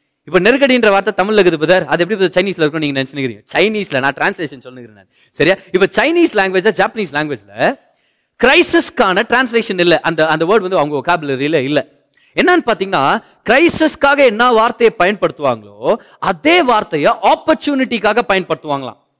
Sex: male